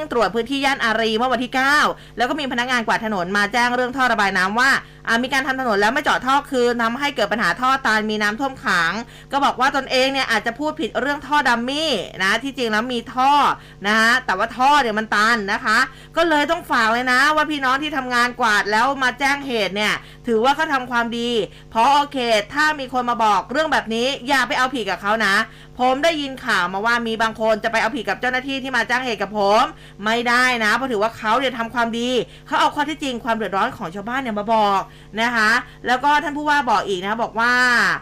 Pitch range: 215-260 Hz